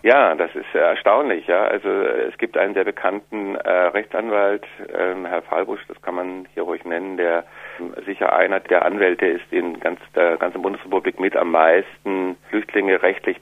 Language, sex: German, male